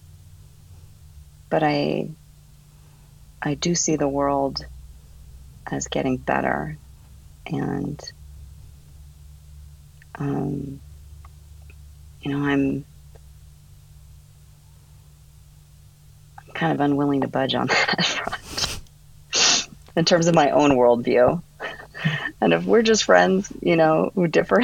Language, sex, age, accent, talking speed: English, female, 40-59, American, 95 wpm